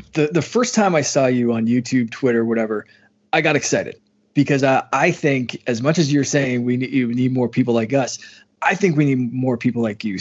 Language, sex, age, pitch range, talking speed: English, male, 20-39, 120-145 Hz, 230 wpm